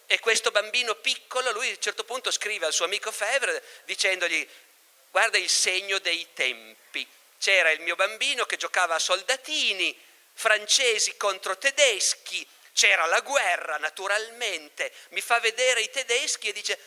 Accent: native